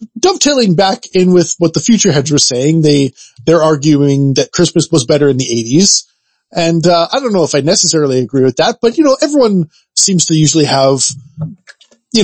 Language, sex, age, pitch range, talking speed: English, male, 20-39, 135-185 Hz, 195 wpm